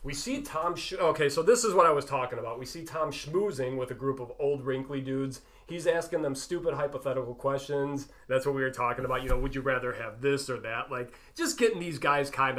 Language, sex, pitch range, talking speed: English, male, 130-170 Hz, 245 wpm